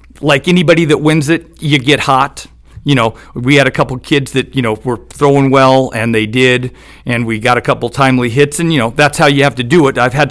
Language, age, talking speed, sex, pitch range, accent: English, 50-69, 250 wpm, male, 125-155 Hz, American